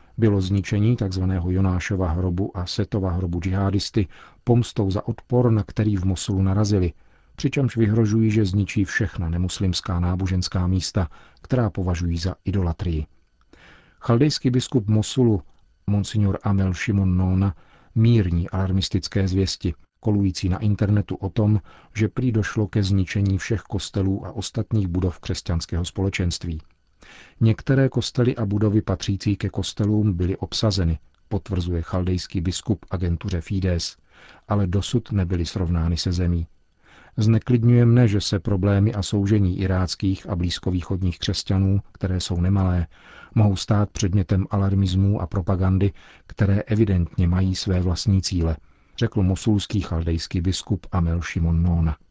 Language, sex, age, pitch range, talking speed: Czech, male, 40-59, 90-105 Hz, 125 wpm